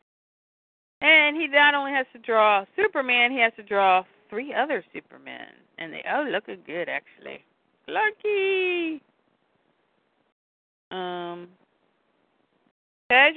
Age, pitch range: 50-69, 180-260 Hz